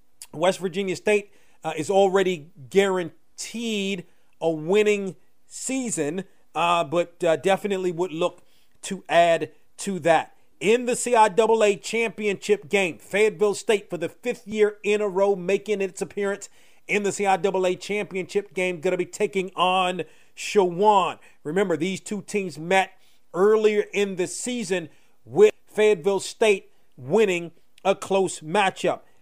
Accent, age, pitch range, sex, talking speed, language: American, 40-59, 185-215 Hz, male, 130 wpm, English